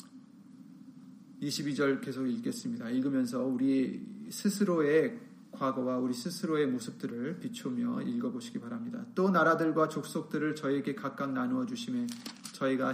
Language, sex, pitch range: Korean, male, 150-235 Hz